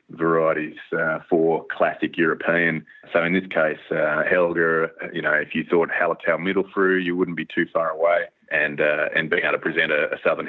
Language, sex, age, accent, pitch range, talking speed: English, male, 30-49, Australian, 85-120 Hz, 195 wpm